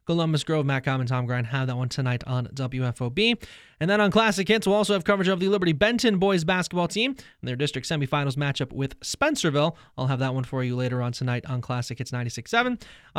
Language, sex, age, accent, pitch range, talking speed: English, male, 20-39, American, 135-210 Hz, 220 wpm